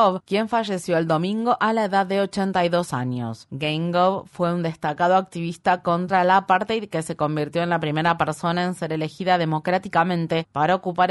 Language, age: Spanish, 30-49